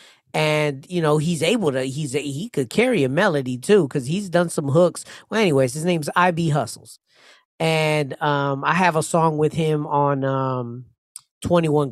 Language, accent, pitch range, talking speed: English, American, 135-160 Hz, 180 wpm